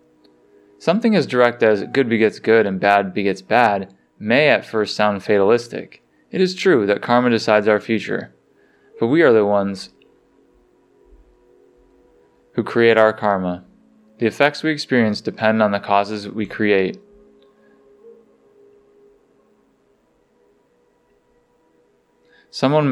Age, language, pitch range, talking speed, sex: 20-39, English, 100-120 Hz, 115 wpm, male